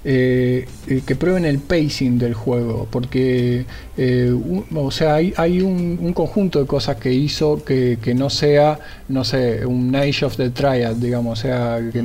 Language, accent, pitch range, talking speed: Spanish, Argentinian, 120-145 Hz, 185 wpm